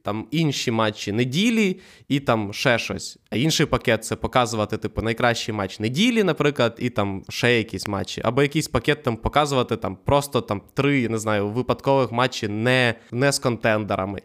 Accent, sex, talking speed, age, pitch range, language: native, male, 175 wpm, 20-39, 115-145 Hz, Ukrainian